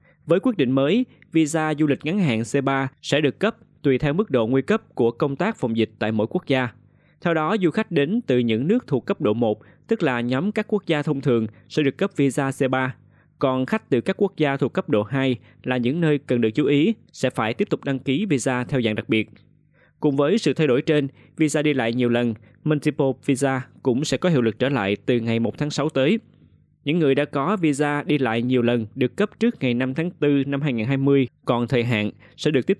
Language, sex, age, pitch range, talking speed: Vietnamese, male, 20-39, 120-155 Hz, 240 wpm